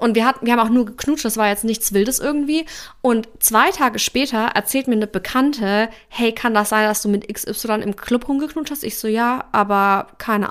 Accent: German